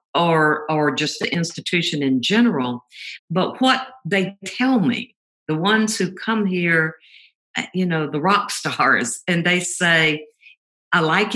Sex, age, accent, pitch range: female, 50-69, American, 150-195 Hz